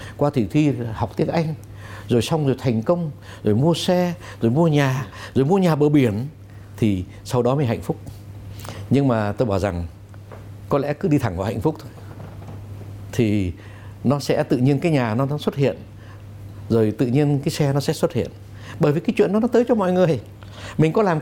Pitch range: 100-155 Hz